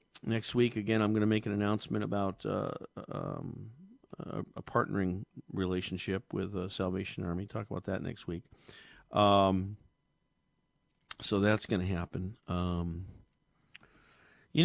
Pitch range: 100-135 Hz